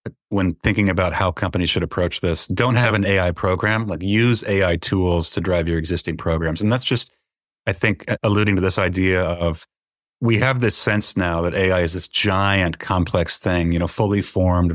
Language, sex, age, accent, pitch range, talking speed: English, male, 30-49, American, 85-105 Hz, 195 wpm